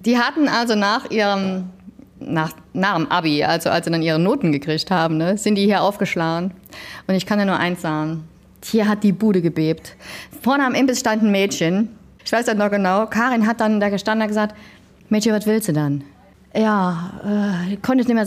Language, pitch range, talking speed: German, 170-225 Hz, 205 wpm